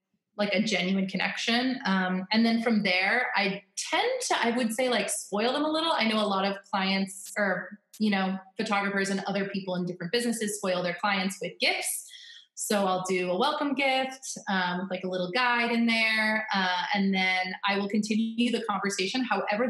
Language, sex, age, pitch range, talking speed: English, female, 20-39, 185-230 Hz, 190 wpm